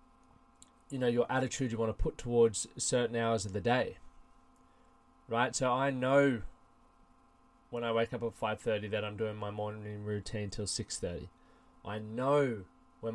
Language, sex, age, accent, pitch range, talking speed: English, male, 20-39, Australian, 110-140 Hz, 160 wpm